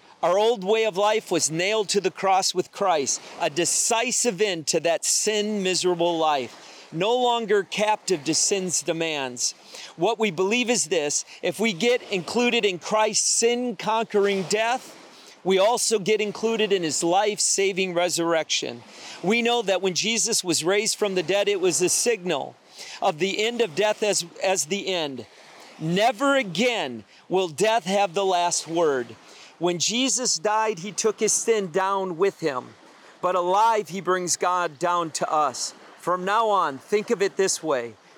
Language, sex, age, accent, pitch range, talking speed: English, male, 40-59, American, 175-215 Hz, 160 wpm